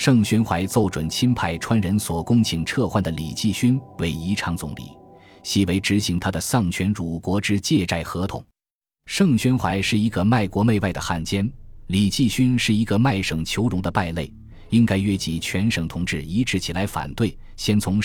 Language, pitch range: Chinese, 85-110 Hz